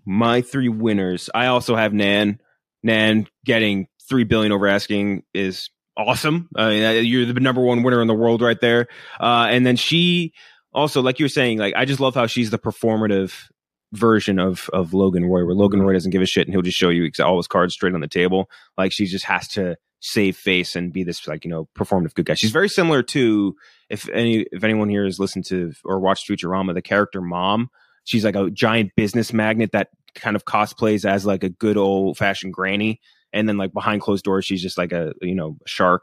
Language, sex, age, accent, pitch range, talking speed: English, male, 20-39, American, 95-125 Hz, 215 wpm